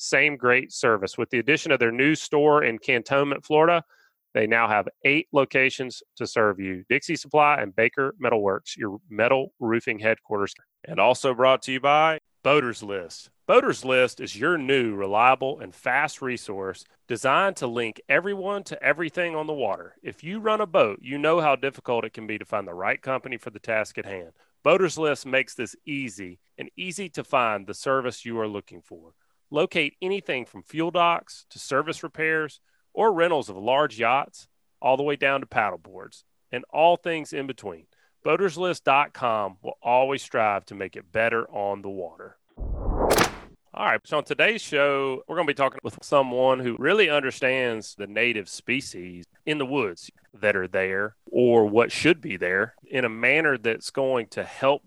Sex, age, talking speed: male, 30-49, 180 wpm